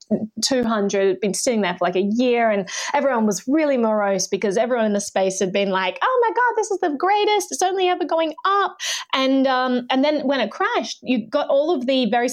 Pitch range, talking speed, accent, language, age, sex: 205-275 Hz, 225 wpm, Australian, English, 20-39, female